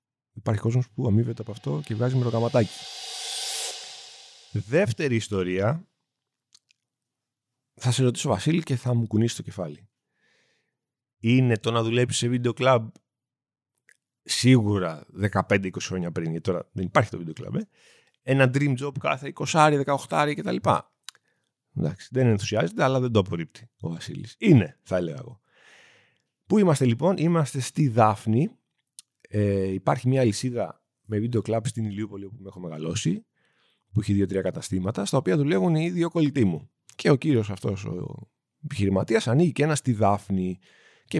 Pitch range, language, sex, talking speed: 100-135 Hz, Greek, male, 150 wpm